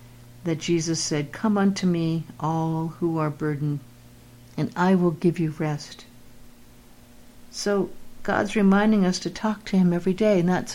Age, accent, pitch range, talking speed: 60-79, American, 150-185 Hz, 155 wpm